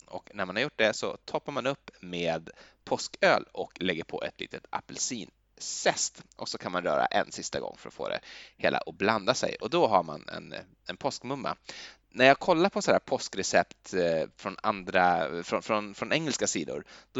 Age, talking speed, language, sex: 20-39, 200 wpm, Swedish, male